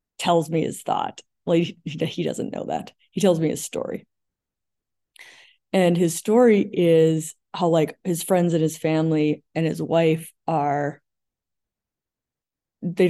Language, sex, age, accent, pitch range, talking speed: English, female, 30-49, American, 155-185 Hz, 135 wpm